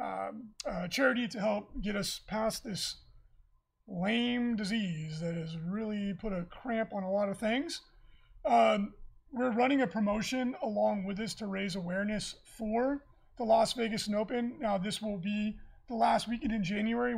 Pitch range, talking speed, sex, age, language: 200-240 Hz, 170 wpm, male, 30-49, English